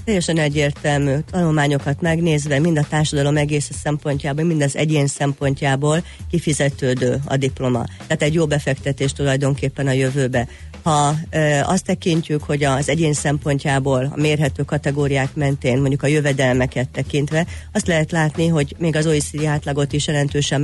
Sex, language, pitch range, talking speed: female, Hungarian, 135-150 Hz, 140 wpm